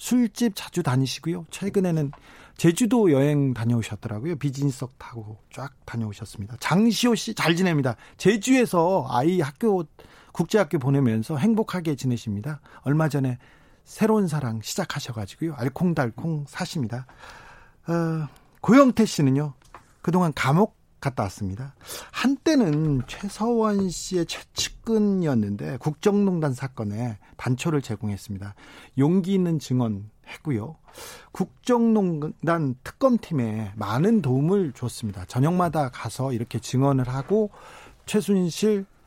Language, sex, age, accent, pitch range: Korean, male, 40-59, native, 125-190 Hz